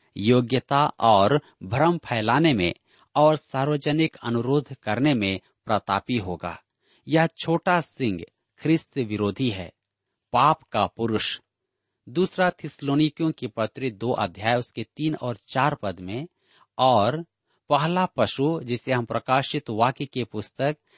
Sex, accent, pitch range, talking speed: male, native, 115-155 Hz, 120 wpm